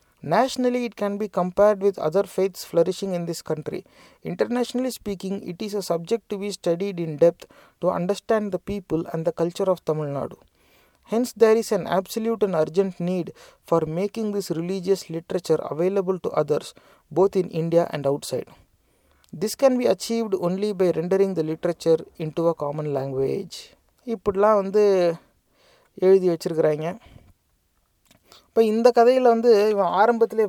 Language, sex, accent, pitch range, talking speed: English, male, Indian, 170-205 Hz, 150 wpm